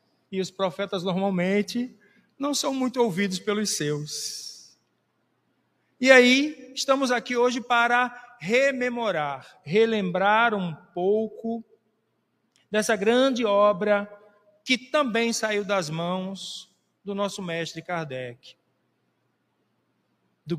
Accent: Brazilian